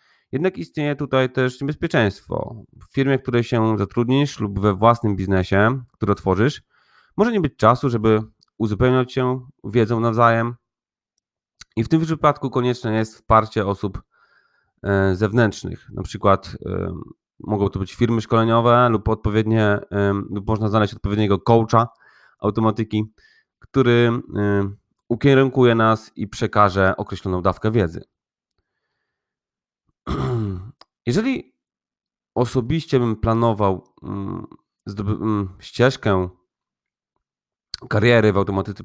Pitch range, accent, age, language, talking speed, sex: 100-125 Hz, native, 30-49, Polish, 100 wpm, male